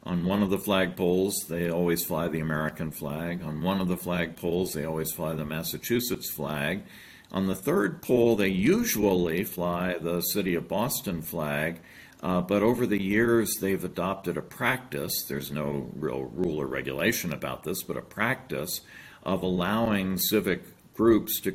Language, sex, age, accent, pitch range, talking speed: English, male, 50-69, American, 85-95 Hz, 165 wpm